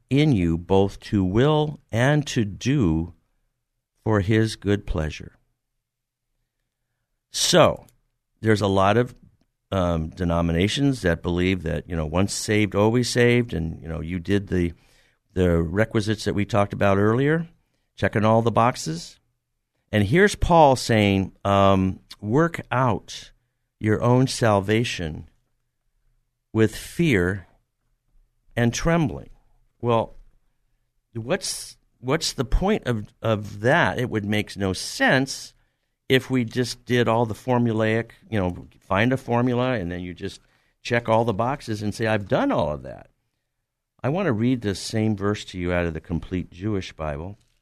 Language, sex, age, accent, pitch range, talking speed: English, male, 50-69, American, 95-125 Hz, 145 wpm